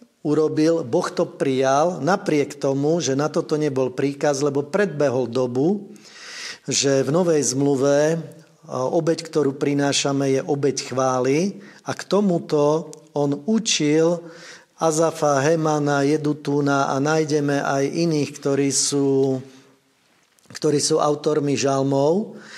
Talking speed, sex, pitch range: 110 wpm, male, 140-160 Hz